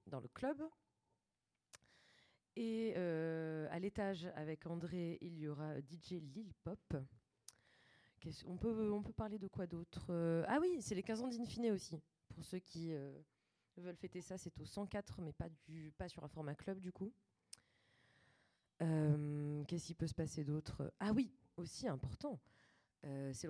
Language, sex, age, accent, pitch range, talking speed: French, female, 20-39, French, 145-190 Hz, 170 wpm